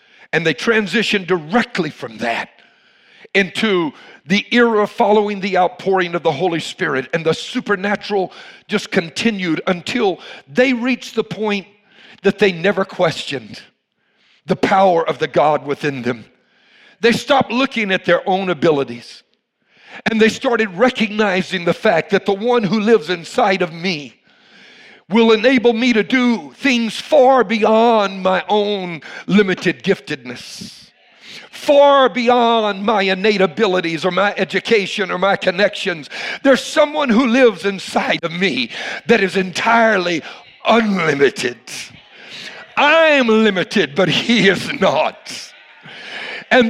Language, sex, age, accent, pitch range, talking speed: English, male, 50-69, American, 185-245 Hz, 130 wpm